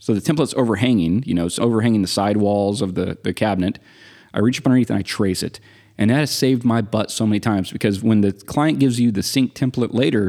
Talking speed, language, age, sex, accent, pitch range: 245 wpm, English, 30-49, male, American, 100-125 Hz